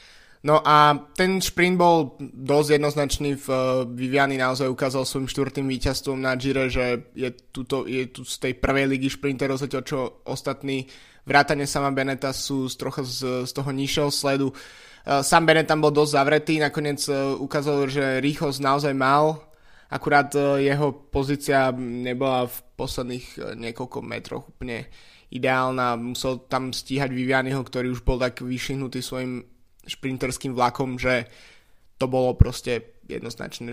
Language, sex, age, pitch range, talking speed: Slovak, male, 20-39, 125-140 Hz, 135 wpm